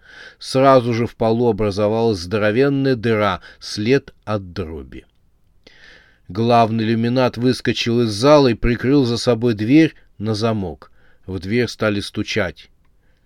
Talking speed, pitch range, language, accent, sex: 120 wpm, 100-130 Hz, Russian, native, male